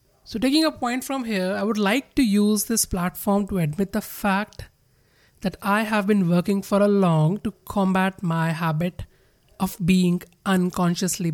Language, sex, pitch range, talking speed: English, male, 180-215 Hz, 170 wpm